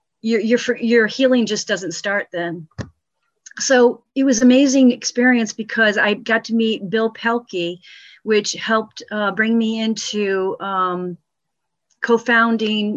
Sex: female